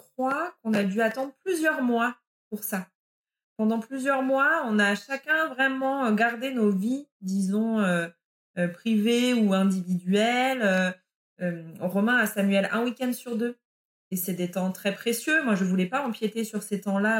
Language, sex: French, female